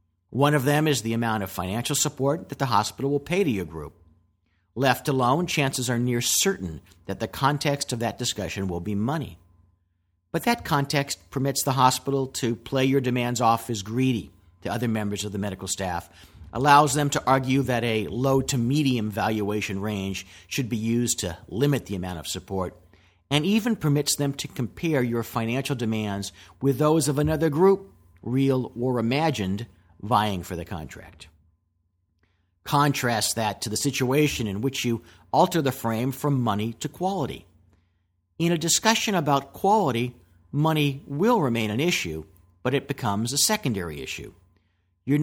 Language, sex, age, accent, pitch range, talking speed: English, male, 50-69, American, 95-140 Hz, 165 wpm